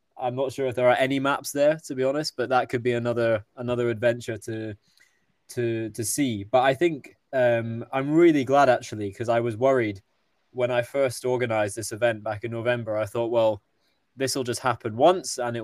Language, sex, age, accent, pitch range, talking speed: English, male, 20-39, British, 115-130 Hz, 205 wpm